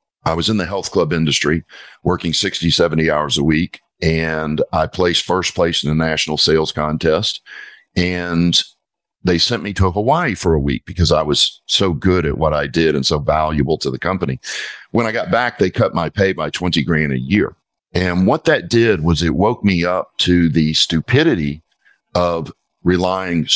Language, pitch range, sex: English, 80-95 Hz, male